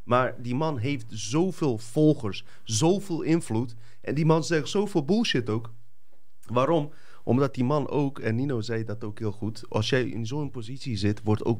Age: 30-49